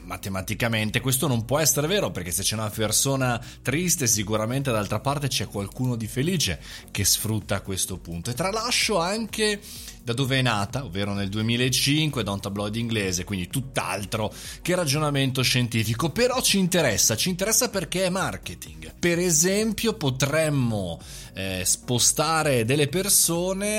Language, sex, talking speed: Italian, male, 145 wpm